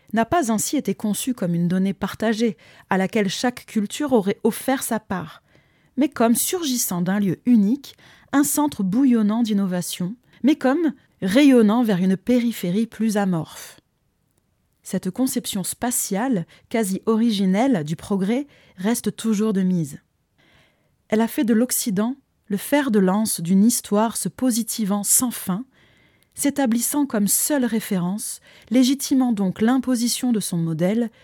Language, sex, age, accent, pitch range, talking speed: French, female, 20-39, French, 195-245 Hz, 135 wpm